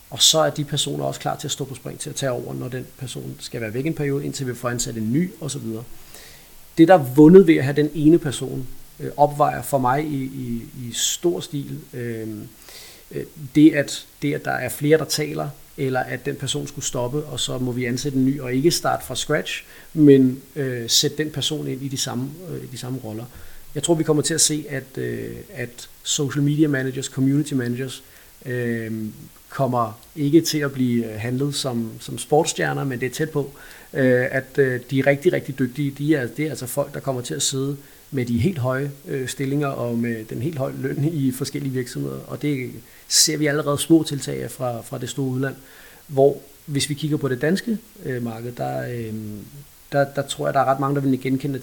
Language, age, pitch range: Danish, 40-59, 125-145 Hz